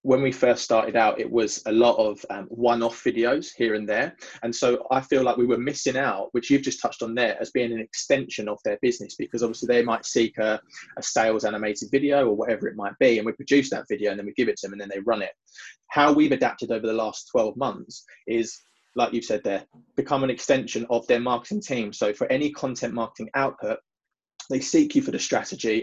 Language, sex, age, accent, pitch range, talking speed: English, male, 20-39, British, 110-140 Hz, 235 wpm